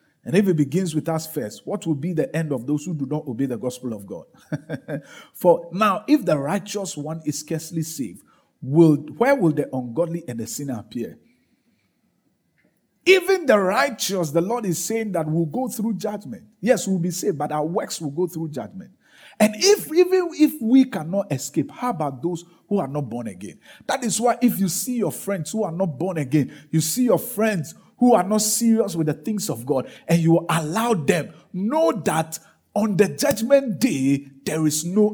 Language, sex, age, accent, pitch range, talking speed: English, male, 50-69, Nigerian, 150-215 Hz, 200 wpm